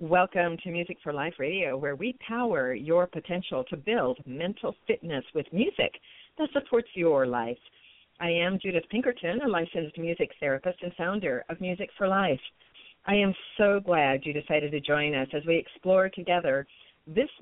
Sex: female